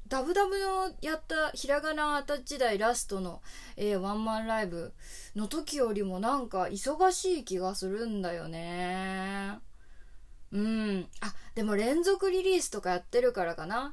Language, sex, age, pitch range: Japanese, female, 20-39, 180-230 Hz